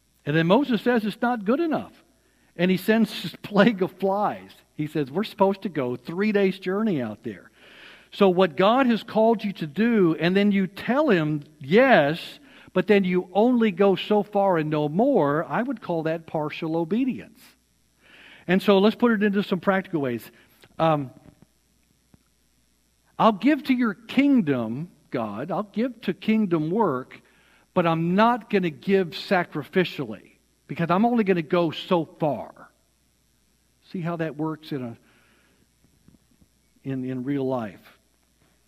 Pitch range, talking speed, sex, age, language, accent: 150-210 Hz, 160 wpm, male, 60-79, English, American